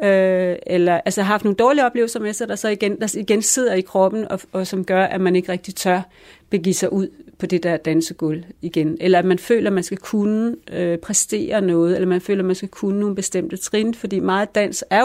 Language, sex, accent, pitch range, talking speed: Danish, female, native, 175-205 Hz, 235 wpm